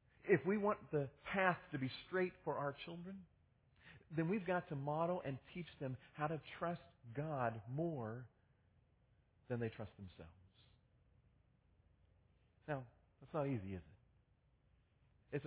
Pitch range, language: 120-165 Hz, English